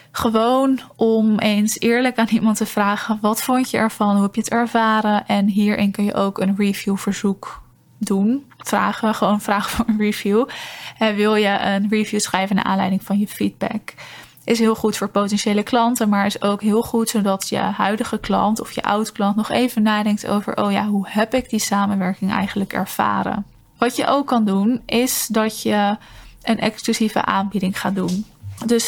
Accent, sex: Dutch, female